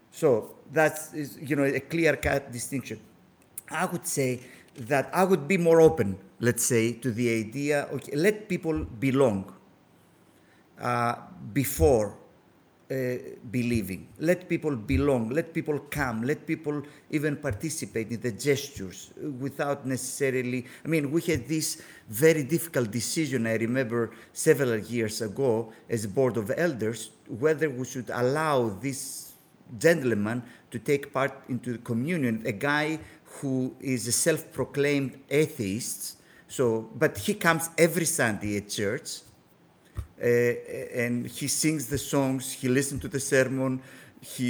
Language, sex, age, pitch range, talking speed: English, male, 50-69, 120-155 Hz, 135 wpm